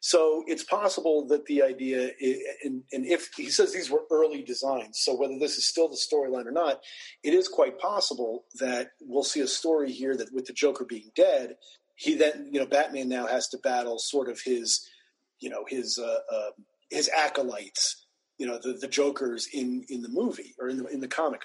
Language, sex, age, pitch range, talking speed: English, male, 40-59, 130-175 Hz, 210 wpm